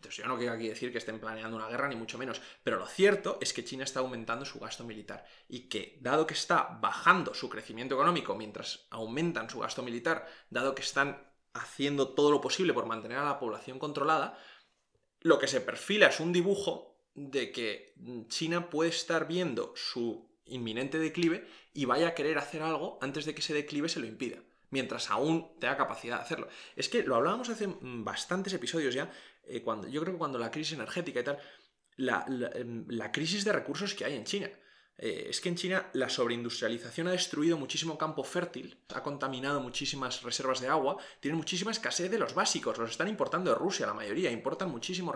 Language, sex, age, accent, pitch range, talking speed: Spanish, male, 20-39, Spanish, 130-180 Hz, 195 wpm